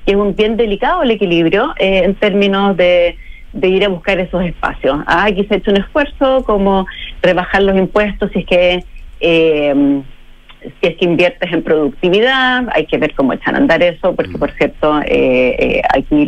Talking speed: 190 wpm